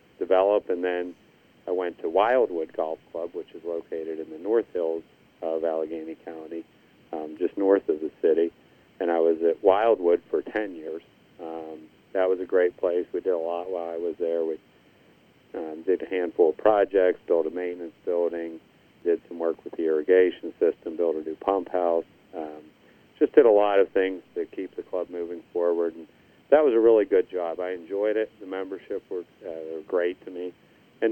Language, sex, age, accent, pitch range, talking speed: English, male, 50-69, American, 85-95 Hz, 195 wpm